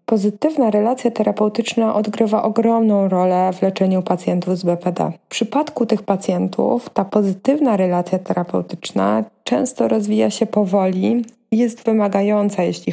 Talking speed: 125 wpm